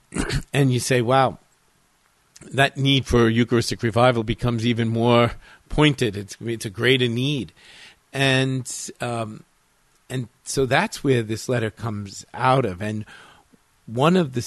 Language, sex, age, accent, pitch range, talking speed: English, male, 50-69, American, 100-130 Hz, 135 wpm